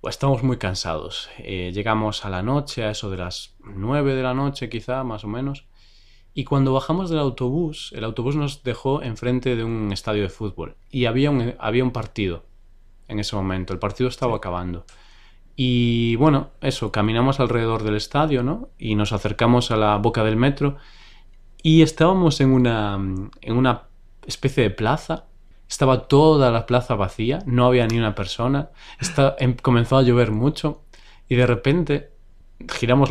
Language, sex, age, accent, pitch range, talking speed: Spanish, male, 20-39, Spanish, 105-140 Hz, 170 wpm